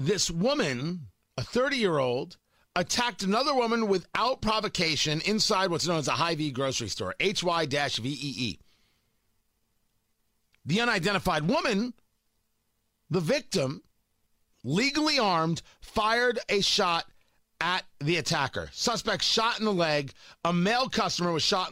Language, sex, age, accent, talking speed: English, male, 50-69, American, 115 wpm